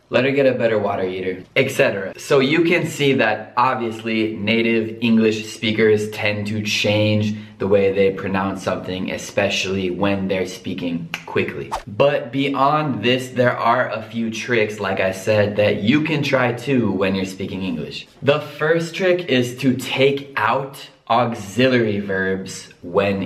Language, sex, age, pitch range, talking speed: Italian, male, 20-39, 105-135 Hz, 155 wpm